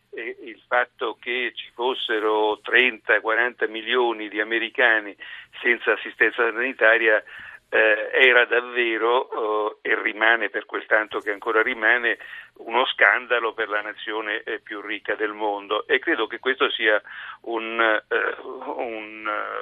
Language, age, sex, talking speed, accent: Italian, 50-69, male, 120 wpm, native